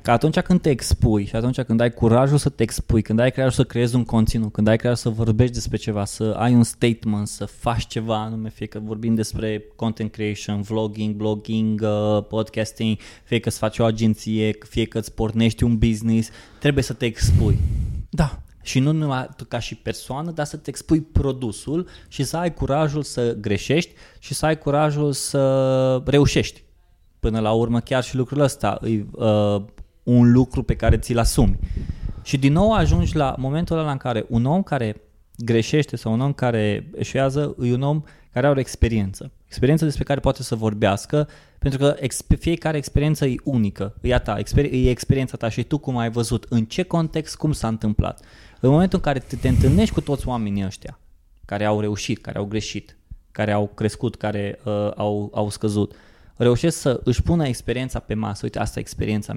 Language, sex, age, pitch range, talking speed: Romanian, male, 20-39, 105-135 Hz, 190 wpm